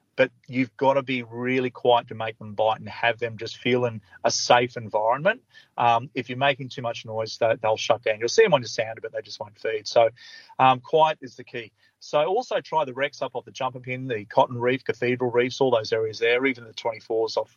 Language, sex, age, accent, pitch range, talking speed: English, male, 30-49, Australian, 120-145 Hz, 240 wpm